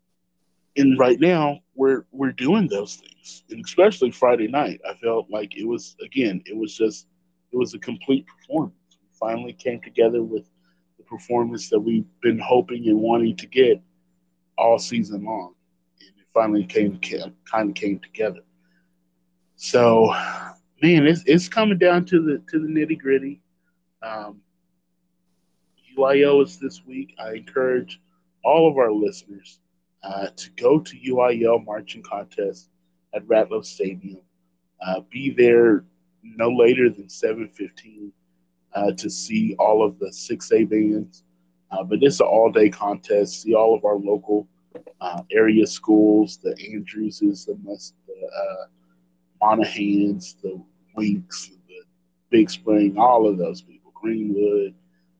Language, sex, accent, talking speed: English, male, American, 140 wpm